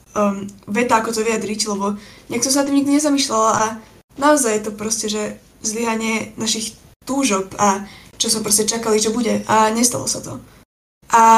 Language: English